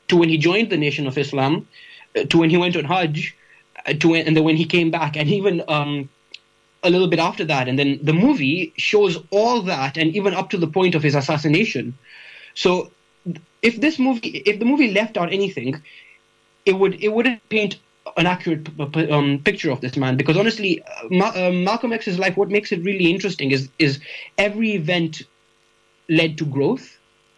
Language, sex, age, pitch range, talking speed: English, male, 20-39, 145-190 Hz, 195 wpm